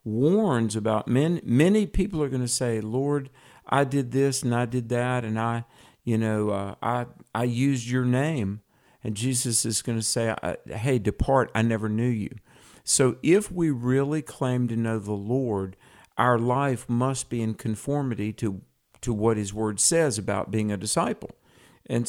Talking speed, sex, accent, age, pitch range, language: 175 wpm, male, American, 50-69, 110-135 Hz, English